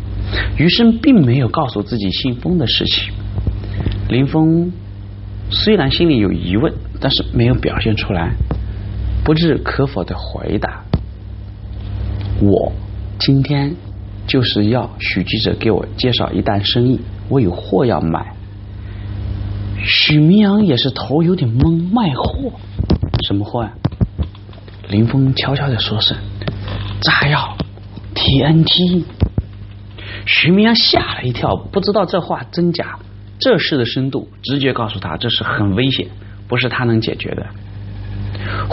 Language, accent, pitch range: Chinese, native, 100-135 Hz